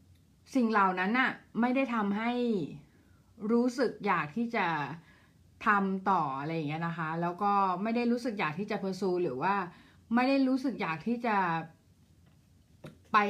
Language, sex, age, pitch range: Thai, female, 20-39, 175-225 Hz